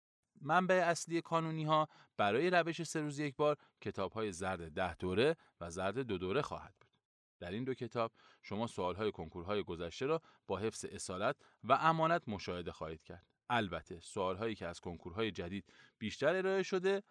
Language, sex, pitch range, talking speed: Persian, male, 95-160 Hz, 160 wpm